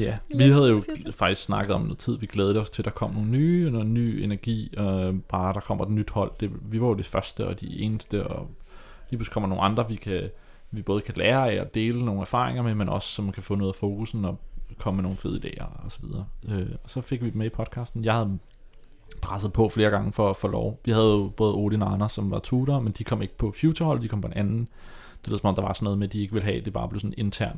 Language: Danish